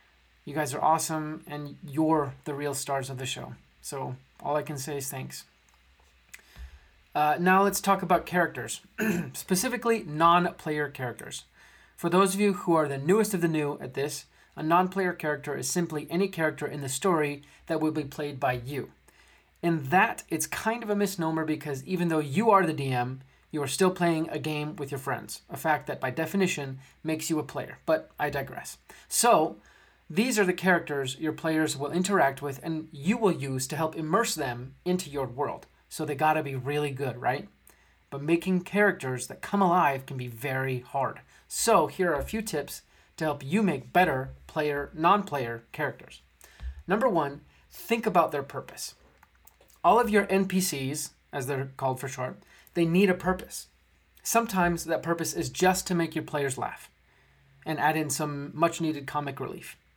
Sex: male